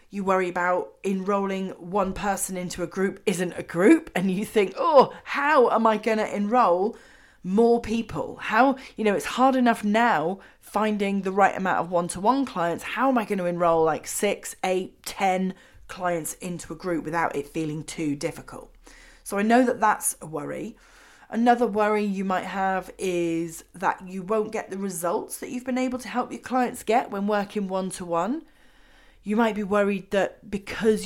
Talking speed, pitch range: 180 wpm, 175-215 Hz